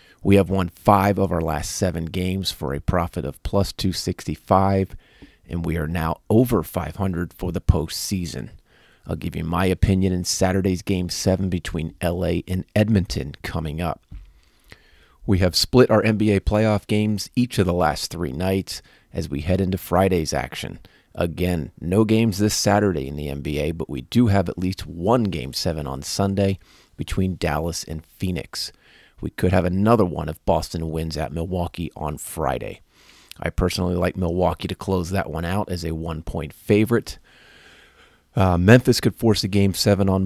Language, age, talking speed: English, 40-59, 170 wpm